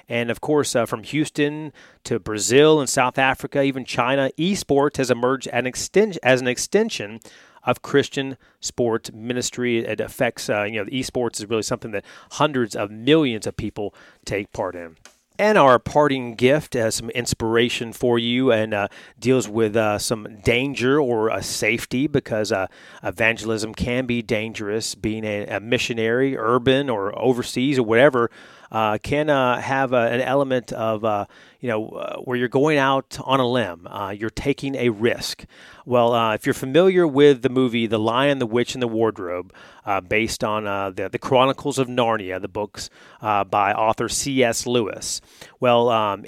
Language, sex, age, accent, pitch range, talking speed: English, male, 30-49, American, 110-135 Hz, 170 wpm